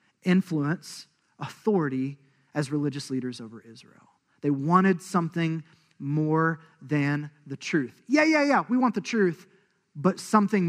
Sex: male